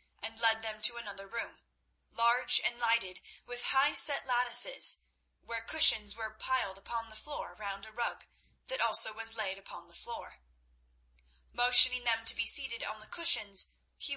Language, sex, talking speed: English, female, 165 wpm